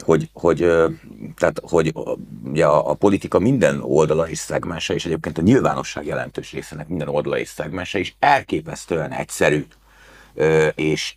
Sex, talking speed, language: male, 125 wpm, Hungarian